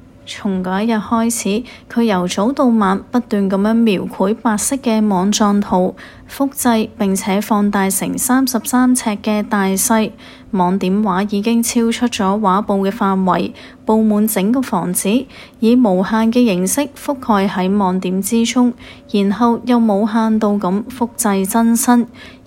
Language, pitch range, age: Chinese, 195-230 Hz, 30-49